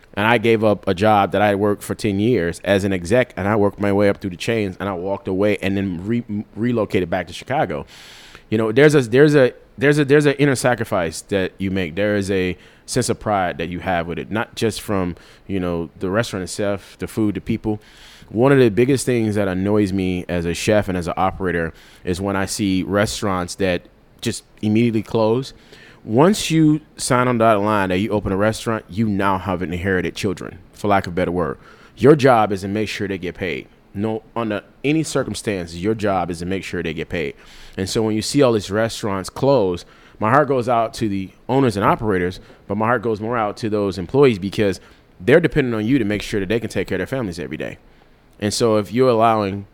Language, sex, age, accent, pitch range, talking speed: English, male, 30-49, American, 95-115 Hz, 230 wpm